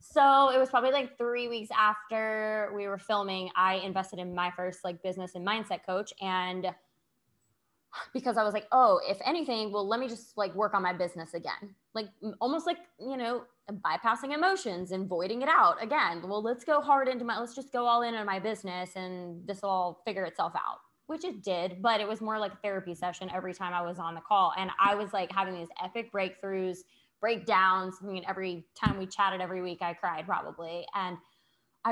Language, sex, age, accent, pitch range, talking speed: English, female, 20-39, American, 185-230 Hz, 210 wpm